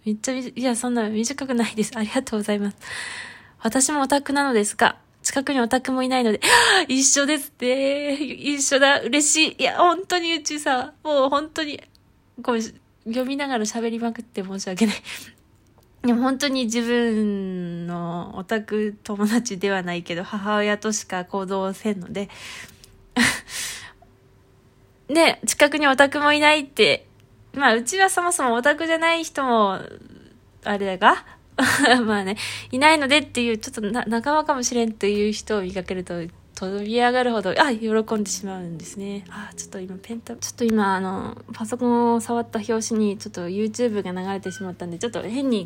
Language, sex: Japanese, female